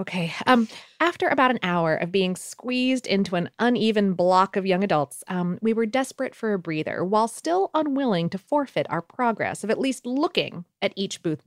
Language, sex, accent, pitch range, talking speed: English, female, American, 180-245 Hz, 195 wpm